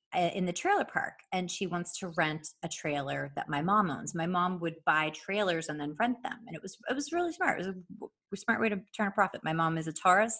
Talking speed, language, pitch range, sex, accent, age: 260 wpm, English, 170-220 Hz, female, American, 30-49